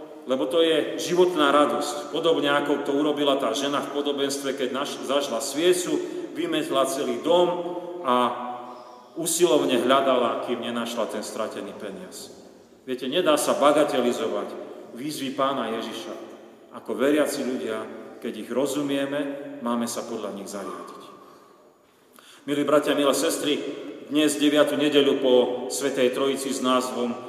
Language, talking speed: Slovak, 130 wpm